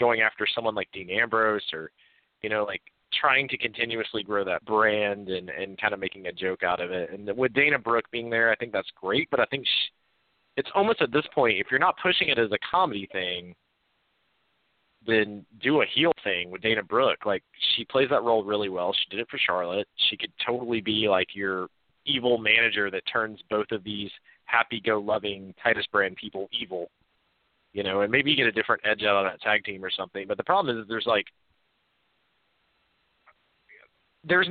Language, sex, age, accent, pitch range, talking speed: English, male, 30-49, American, 100-130 Hz, 200 wpm